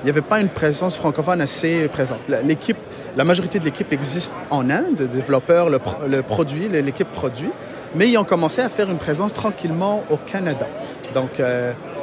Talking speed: 185 wpm